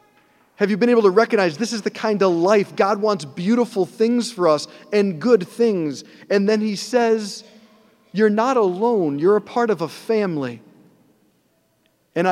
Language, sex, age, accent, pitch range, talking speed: English, male, 40-59, American, 155-215 Hz, 170 wpm